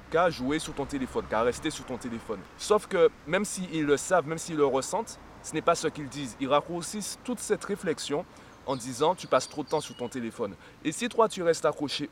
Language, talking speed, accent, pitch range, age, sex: French, 235 wpm, French, 135-165 Hz, 30-49, male